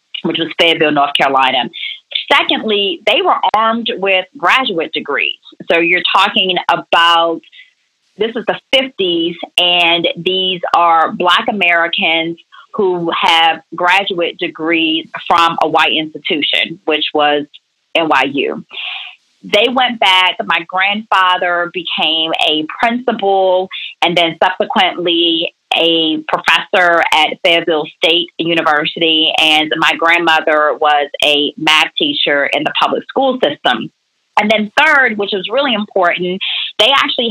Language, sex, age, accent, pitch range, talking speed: English, female, 30-49, American, 160-200 Hz, 120 wpm